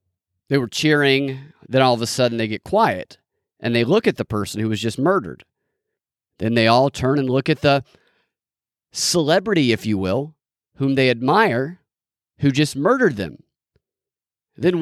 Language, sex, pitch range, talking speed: English, male, 130-195 Hz, 165 wpm